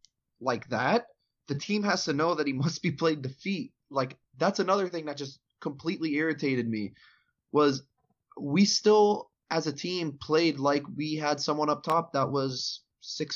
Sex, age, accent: male, 20-39, American